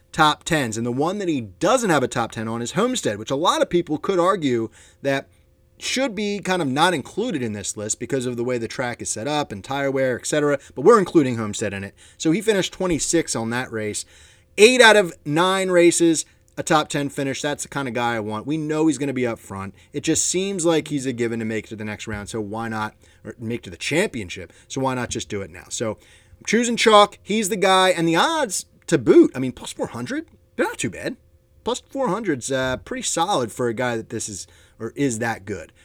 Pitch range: 110-165 Hz